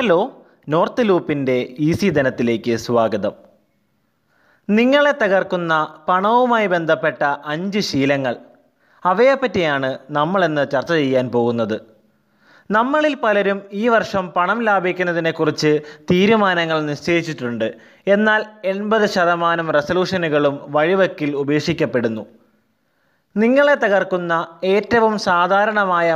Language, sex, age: Malayalam, male, 20-39